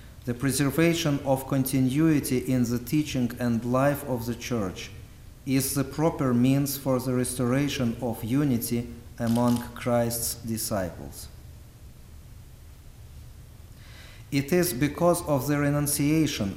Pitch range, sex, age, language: 115-140 Hz, male, 50-69, English